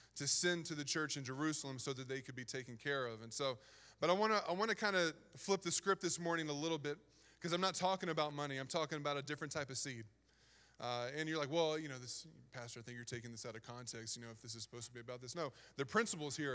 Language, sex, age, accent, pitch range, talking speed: English, male, 20-39, American, 140-180 Hz, 285 wpm